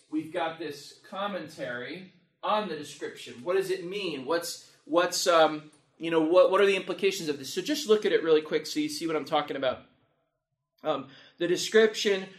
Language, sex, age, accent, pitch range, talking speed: English, male, 30-49, American, 150-190 Hz, 195 wpm